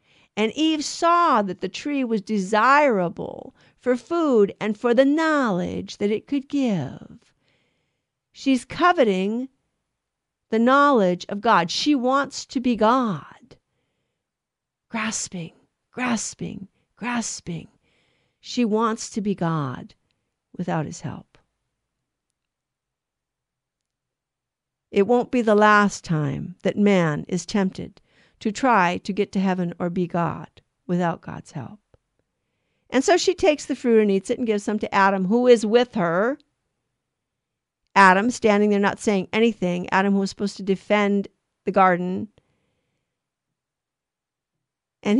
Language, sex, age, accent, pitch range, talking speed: English, female, 50-69, American, 195-250 Hz, 125 wpm